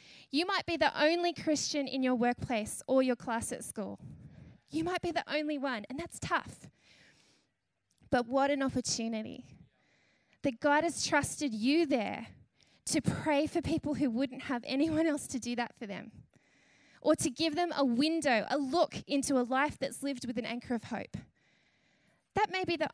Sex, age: female, 10-29